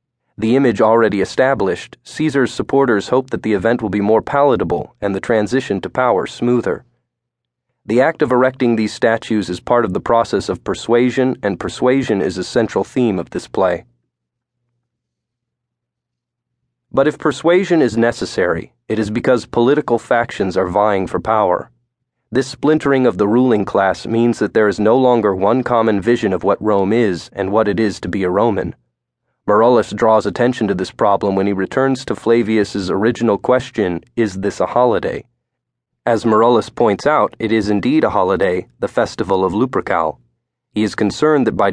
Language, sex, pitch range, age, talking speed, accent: English, male, 100-125 Hz, 40-59, 170 wpm, American